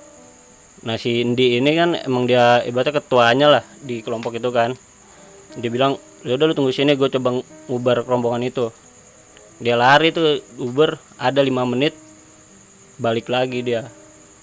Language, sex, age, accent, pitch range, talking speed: Indonesian, male, 20-39, native, 120-145 Hz, 145 wpm